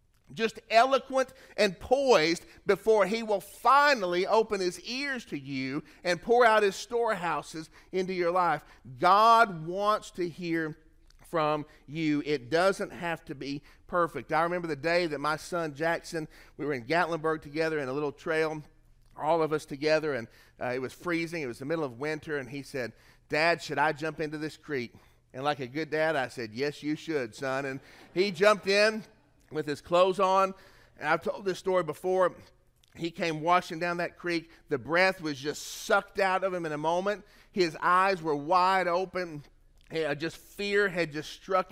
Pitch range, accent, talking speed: 155-185 Hz, American, 185 wpm